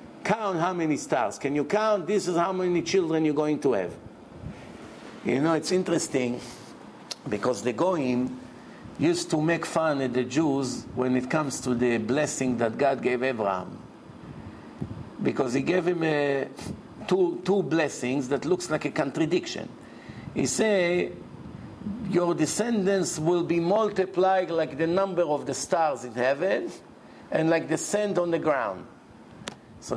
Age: 50-69